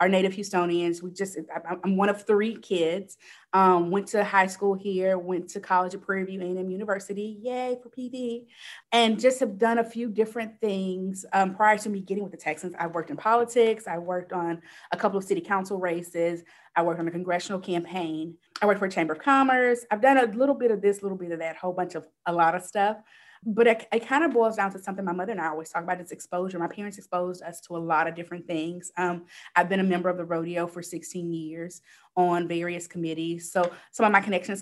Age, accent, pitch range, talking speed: 30-49, American, 170-205 Hz, 230 wpm